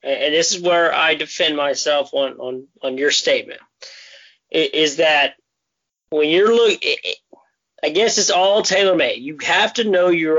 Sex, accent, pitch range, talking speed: male, American, 155-220 Hz, 160 wpm